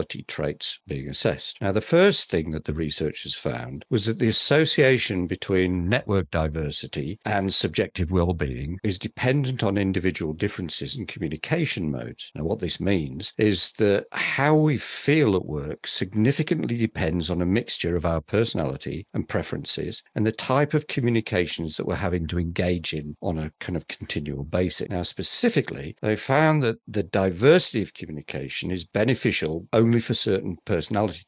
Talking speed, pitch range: 155 wpm, 85-120 Hz